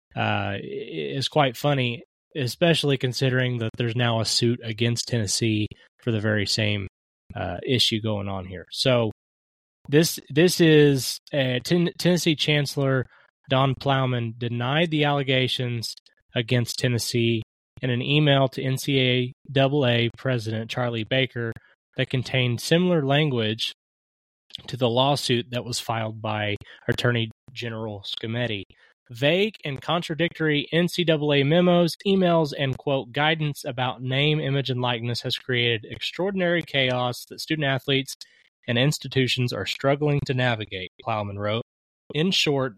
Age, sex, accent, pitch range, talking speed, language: 20-39, male, American, 115-150 Hz, 125 wpm, English